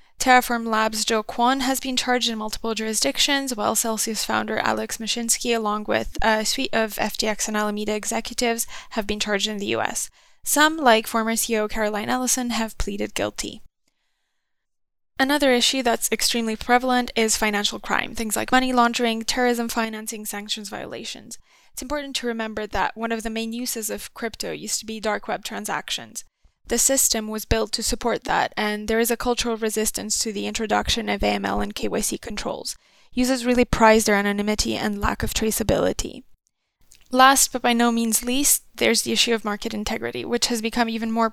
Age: 20-39